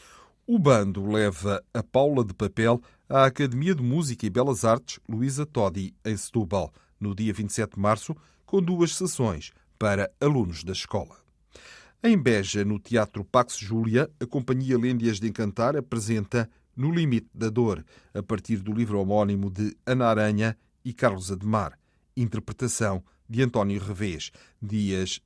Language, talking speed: Portuguese, 145 wpm